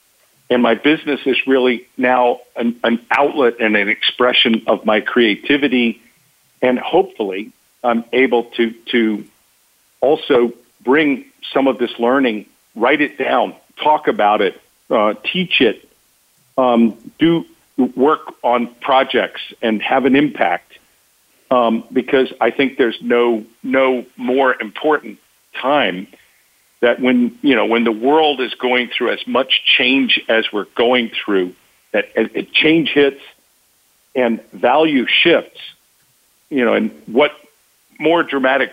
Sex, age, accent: male, 50-69, American